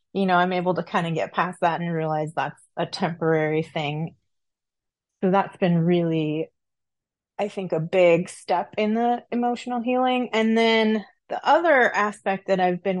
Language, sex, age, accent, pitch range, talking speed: English, female, 30-49, American, 175-205 Hz, 170 wpm